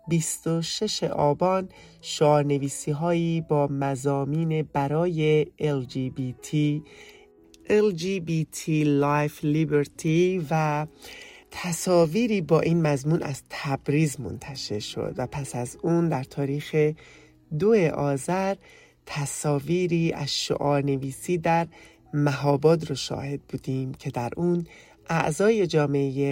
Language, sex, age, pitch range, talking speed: English, male, 30-49, 140-175 Hz, 105 wpm